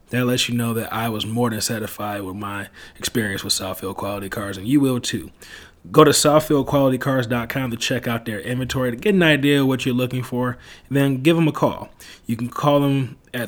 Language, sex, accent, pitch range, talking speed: English, male, American, 110-135 Hz, 220 wpm